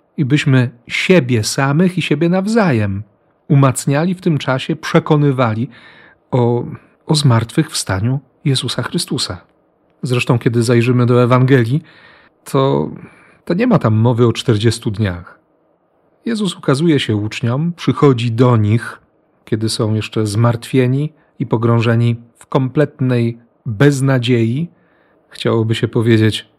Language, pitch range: Polish, 115-155 Hz